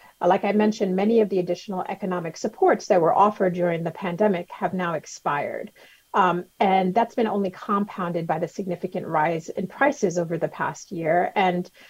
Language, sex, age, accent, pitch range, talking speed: English, female, 40-59, American, 180-215 Hz, 175 wpm